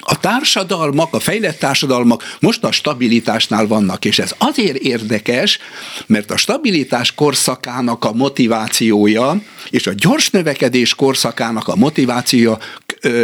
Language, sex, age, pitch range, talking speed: Hungarian, male, 60-79, 120-180 Hz, 120 wpm